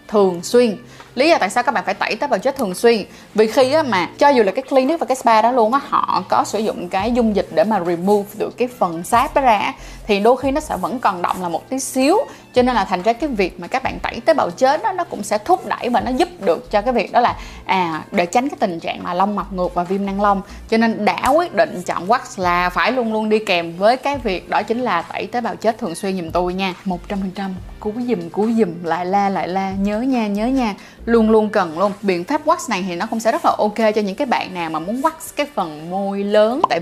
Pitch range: 195-245 Hz